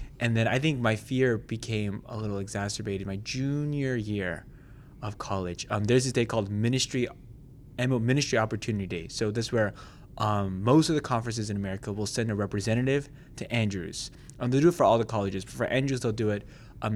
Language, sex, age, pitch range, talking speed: English, male, 20-39, 105-130 Hz, 195 wpm